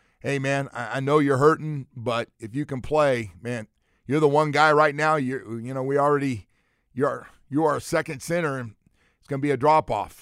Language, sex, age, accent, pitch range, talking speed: English, male, 40-59, American, 110-145 Hz, 205 wpm